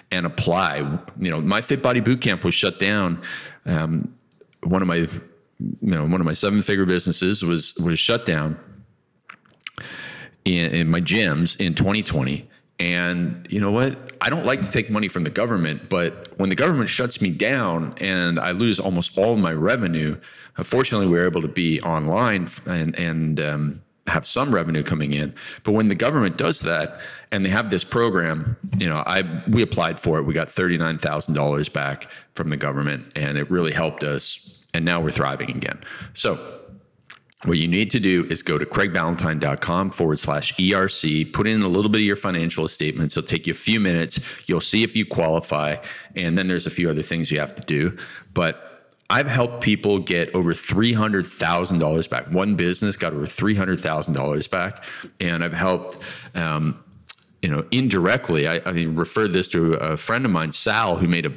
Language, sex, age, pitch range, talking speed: English, male, 30-49, 80-100 Hz, 185 wpm